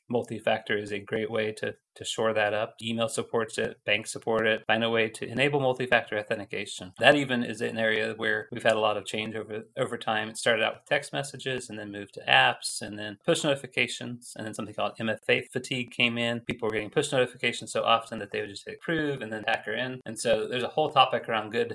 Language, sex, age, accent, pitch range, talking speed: English, male, 30-49, American, 110-130 Hz, 235 wpm